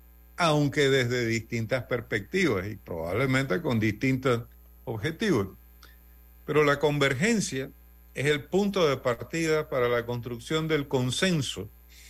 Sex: male